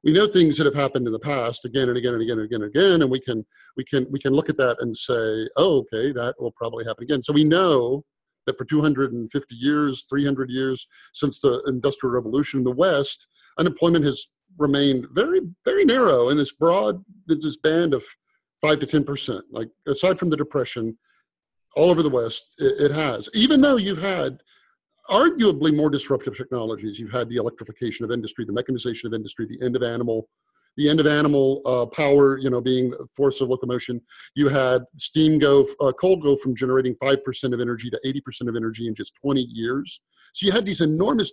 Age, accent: 50-69, American